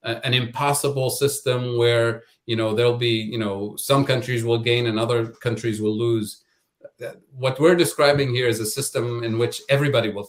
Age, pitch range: 30-49, 105-120 Hz